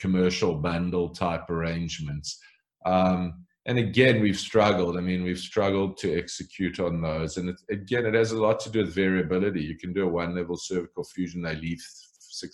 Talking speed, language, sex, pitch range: 180 wpm, English, male, 85-105 Hz